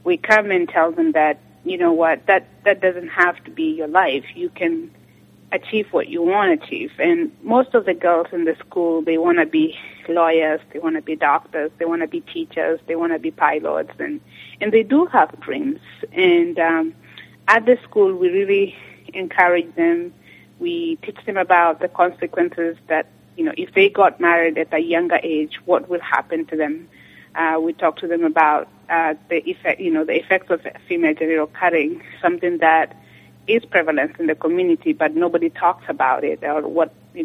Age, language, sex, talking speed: 30-49, English, female, 195 wpm